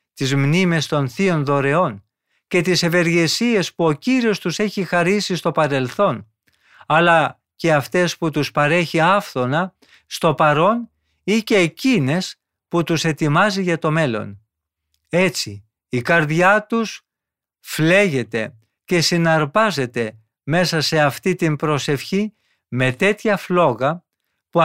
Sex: male